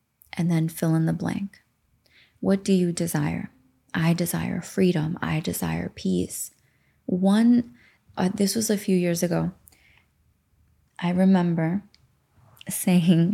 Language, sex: English, female